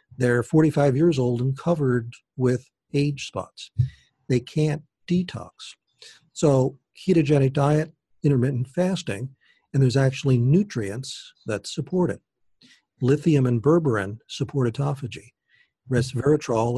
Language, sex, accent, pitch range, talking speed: English, male, American, 120-150 Hz, 105 wpm